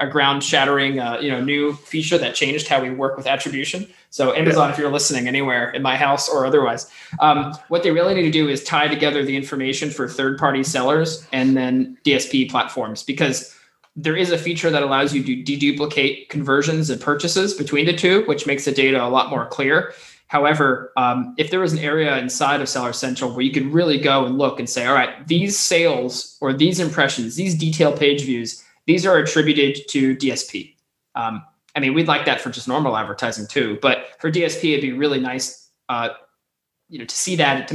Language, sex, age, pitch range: English, male, 20-39, 130-155 Hz